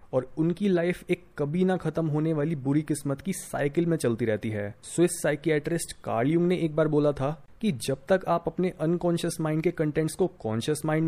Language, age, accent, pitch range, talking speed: Hindi, 30-49, native, 130-170 Hz, 200 wpm